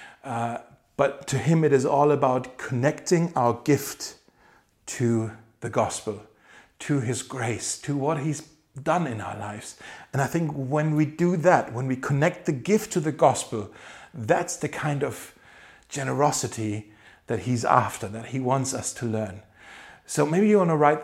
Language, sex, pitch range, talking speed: German, male, 120-150 Hz, 170 wpm